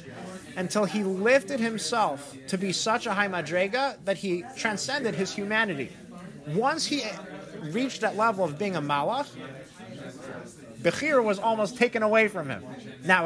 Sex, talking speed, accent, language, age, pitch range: male, 145 wpm, American, English, 30-49, 145-195 Hz